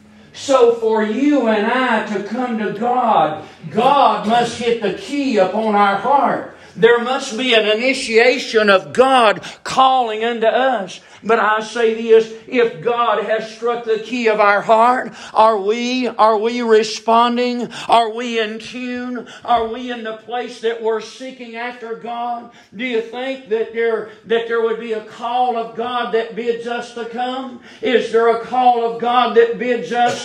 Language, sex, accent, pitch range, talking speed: English, male, American, 195-235 Hz, 170 wpm